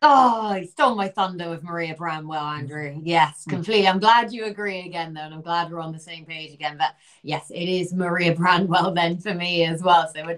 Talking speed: 225 wpm